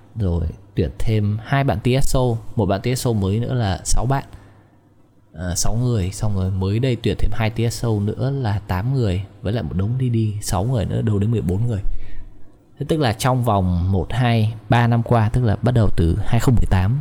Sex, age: male, 20-39